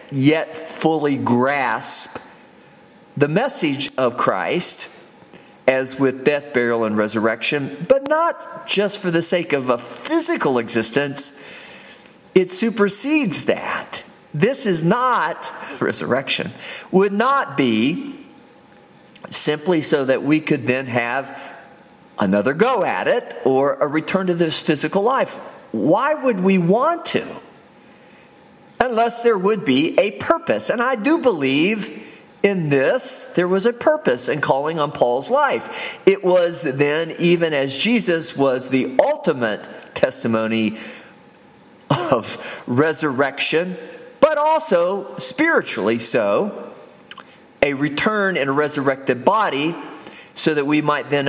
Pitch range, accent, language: 135-220 Hz, American, English